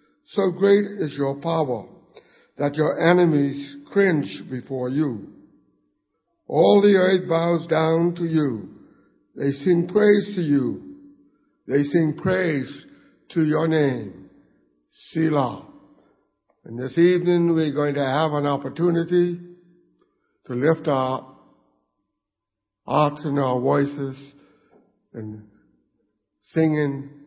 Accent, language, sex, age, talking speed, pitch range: American, English, male, 60-79, 105 wpm, 125-160 Hz